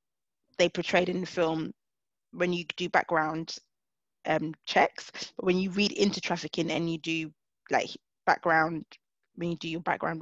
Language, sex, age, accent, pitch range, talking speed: English, female, 20-39, British, 165-185 Hz, 160 wpm